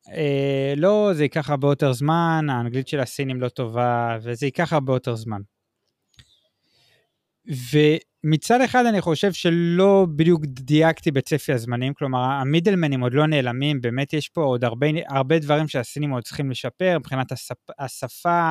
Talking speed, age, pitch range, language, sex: 145 wpm, 20-39, 130-160 Hz, Hebrew, male